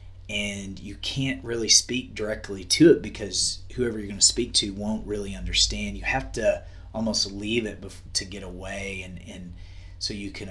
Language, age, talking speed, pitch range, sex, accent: English, 30-49, 185 wpm, 90-100 Hz, male, American